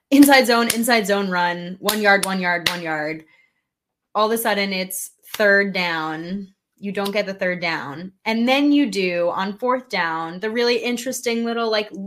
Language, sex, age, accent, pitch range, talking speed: English, female, 10-29, American, 185-245 Hz, 180 wpm